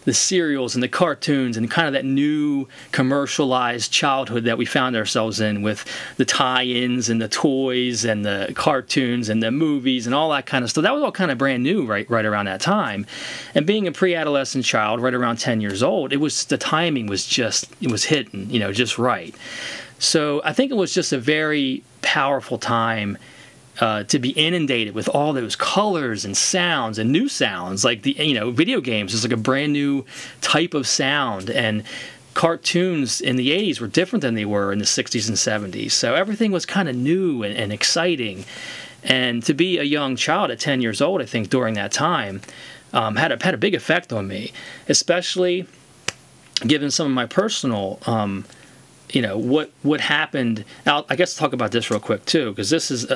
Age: 30-49